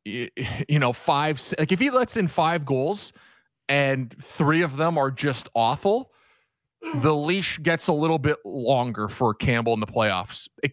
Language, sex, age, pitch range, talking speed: English, male, 30-49, 130-180 Hz, 170 wpm